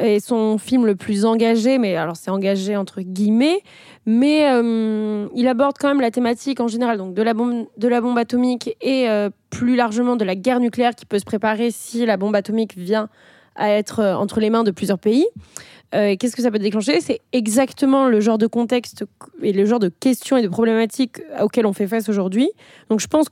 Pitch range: 215-260 Hz